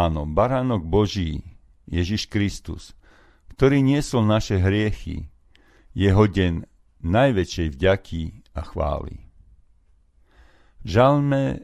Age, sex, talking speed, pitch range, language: 50-69, male, 80 wpm, 80-105 Hz, Slovak